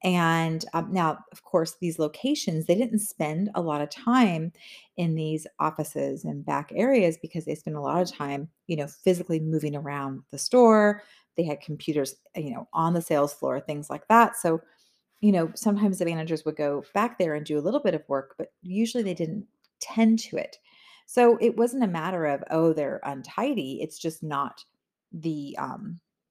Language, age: English, 30-49